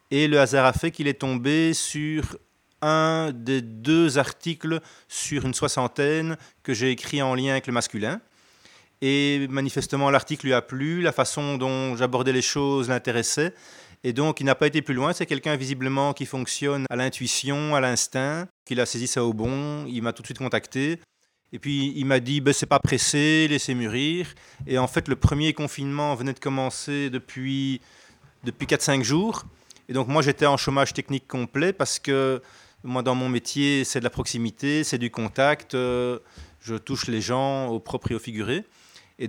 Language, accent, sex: French, French, male